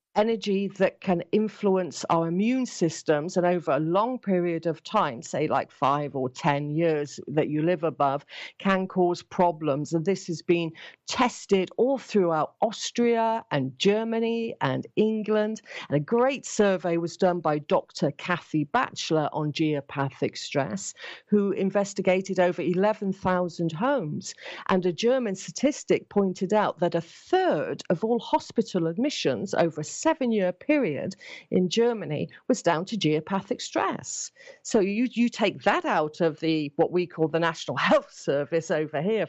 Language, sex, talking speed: English, female, 150 wpm